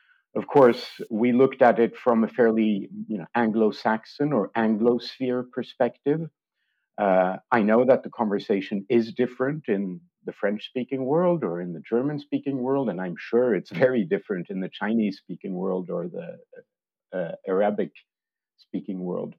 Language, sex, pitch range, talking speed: English, male, 105-145 Hz, 140 wpm